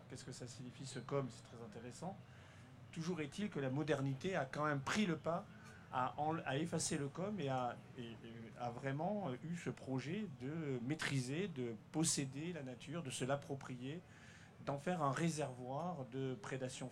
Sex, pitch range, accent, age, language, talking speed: male, 130-165 Hz, French, 50-69, French, 175 wpm